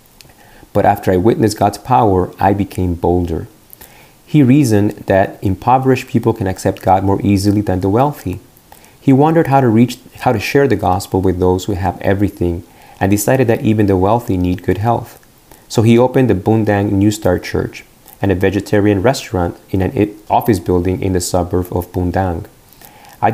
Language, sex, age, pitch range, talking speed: English, male, 30-49, 95-120 Hz, 175 wpm